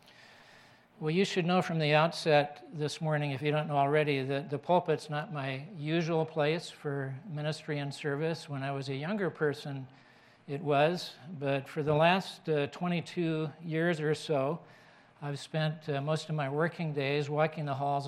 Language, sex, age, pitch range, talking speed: English, male, 60-79, 135-155 Hz, 175 wpm